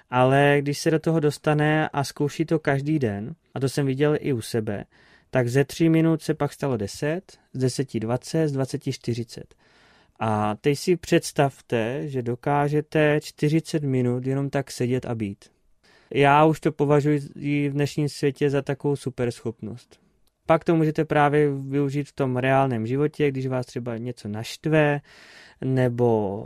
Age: 20-39